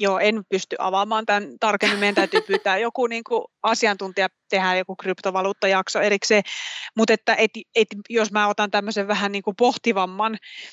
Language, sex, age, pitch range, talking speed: Finnish, female, 30-49, 200-225 Hz, 140 wpm